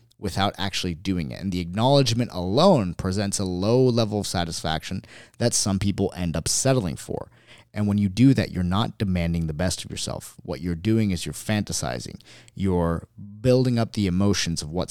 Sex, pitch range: male, 90-115 Hz